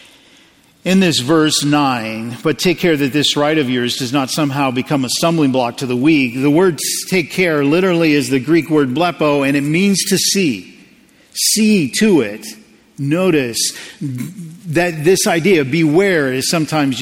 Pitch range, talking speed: 140-185 Hz, 165 wpm